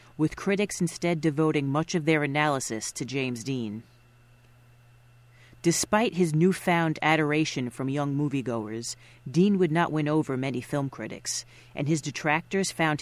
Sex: female